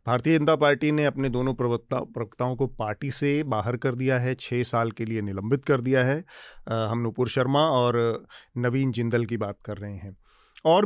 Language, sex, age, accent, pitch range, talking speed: Hindi, male, 40-59, native, 120-155 Hz, 200 wpm